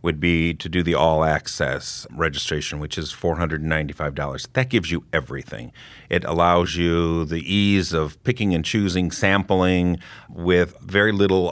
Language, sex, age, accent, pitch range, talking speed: English, male, 50-69, American, 80-95 Hz, 140 wpm